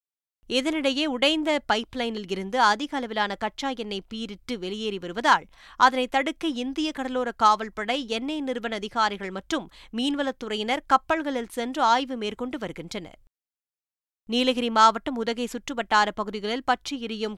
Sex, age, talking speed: female, 20-39, 115 wpm